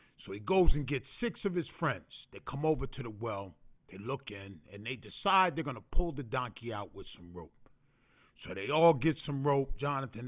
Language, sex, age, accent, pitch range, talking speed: English, male, 40-59, American, 105-150 Hz, 220 wpm